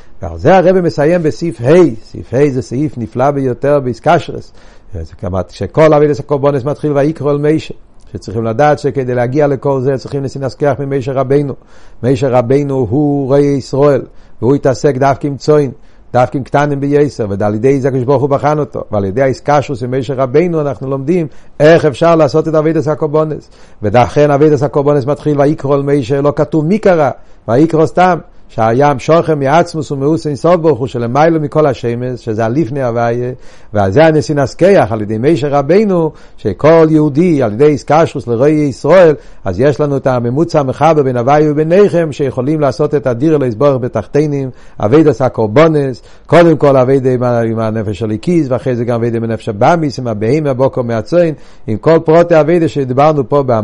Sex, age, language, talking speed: male, 60-79, Hebrew, 155 wpm